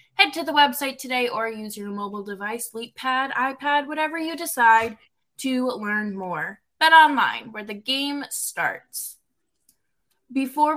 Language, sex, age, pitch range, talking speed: English, female, 20-39, 230-300 Hz, 135 wpm